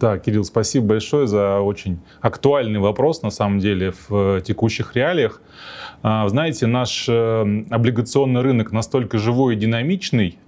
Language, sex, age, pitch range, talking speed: Russian, male, 20-39, 105-130 Hz, 125 wpm